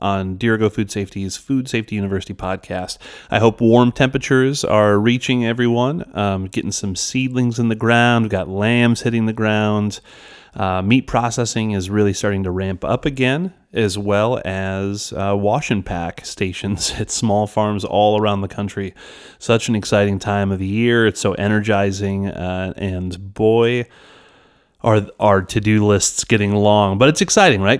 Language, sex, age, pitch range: English, male, 30-49, 100-120 Hz